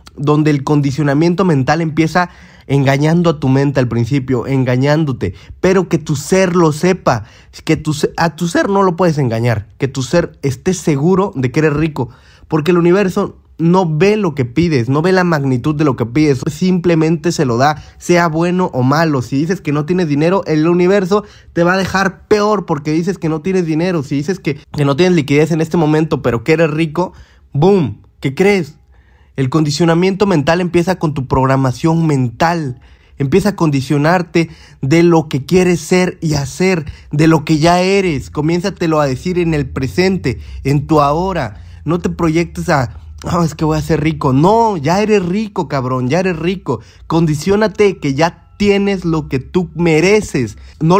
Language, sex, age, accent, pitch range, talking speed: Spanish, male, 20-39, Mexican, 140-180 Hz, 185 wpm